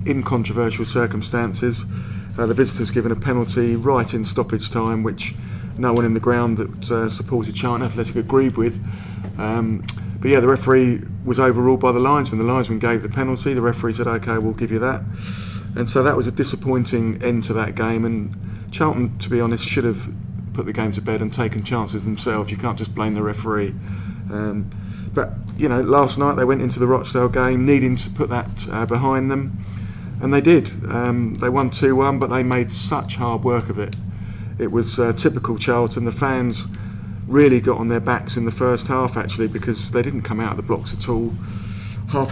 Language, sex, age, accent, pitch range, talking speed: English, male, 30-49, British, 105-125 Hz, 205 wpm